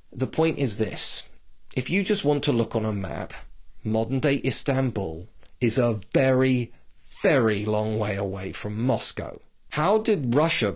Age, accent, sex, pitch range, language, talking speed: 40-59, British, male, 105-130 Hz, English, 155 wpm